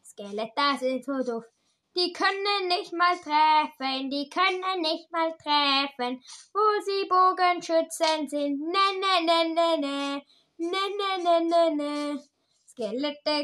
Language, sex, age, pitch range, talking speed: German, female, 10-29, 245-335 Hz, 130 wpm